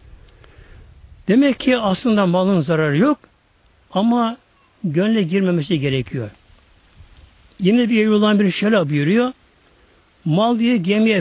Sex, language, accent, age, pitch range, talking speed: male, Turkish, native, 60-79, 130-215 Hz, 100 wpm